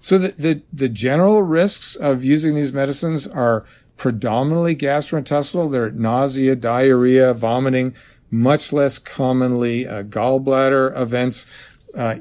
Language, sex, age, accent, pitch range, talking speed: English, male, 50-69, American, 125-150 Hz, 120 wpm